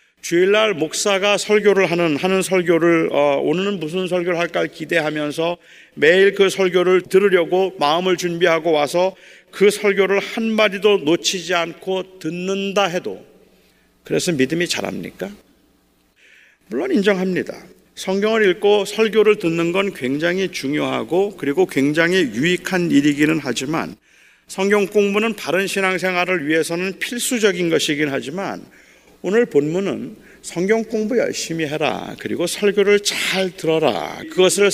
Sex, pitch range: male, 160-200 Hz